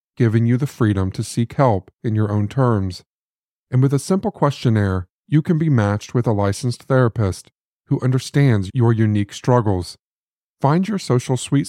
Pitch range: 105-130 Hz